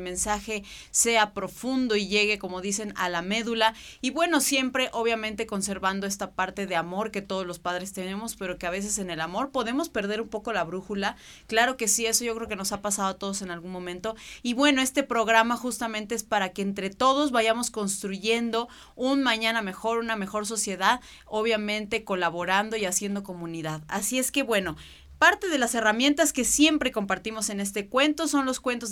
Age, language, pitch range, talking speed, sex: 30-49, Spanish, 185-250 Hz, 190 wpm, female